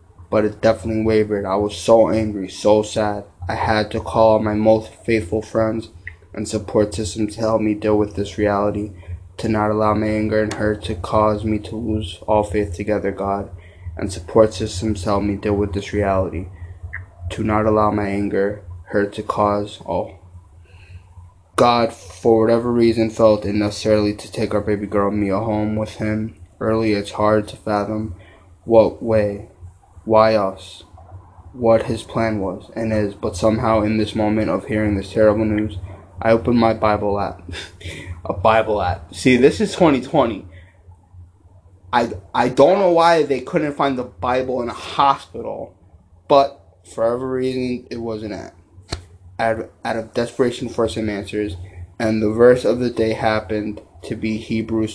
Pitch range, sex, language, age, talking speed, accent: 95-110 Hz, male, English, 20-39, 170 wpm, American